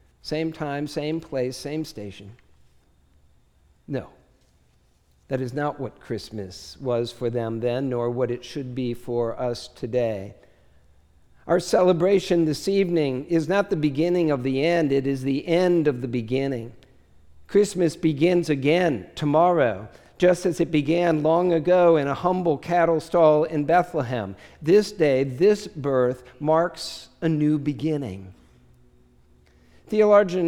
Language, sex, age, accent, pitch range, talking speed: English, male, 50-69, American, 115-170 Hz, 135 wpm